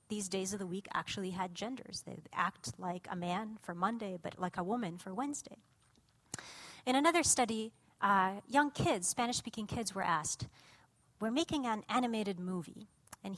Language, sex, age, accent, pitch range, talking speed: English, female, 40-59, American, 170-225 Hz, 165 wpm